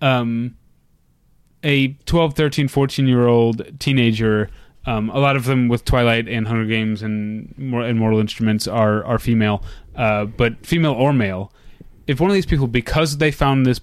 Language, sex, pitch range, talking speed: English, male, 110-135 Hz, 165 wpm